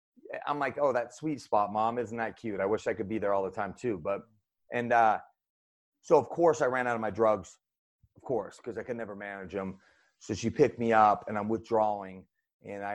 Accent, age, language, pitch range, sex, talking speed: American, 30-49, English, 100-115 Hz, male, 230 wpm